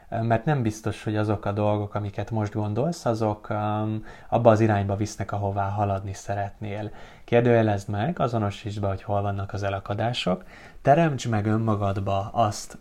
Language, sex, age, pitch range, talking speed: Hungarian, male, 20-39, 100-120 Hz, 150 wpm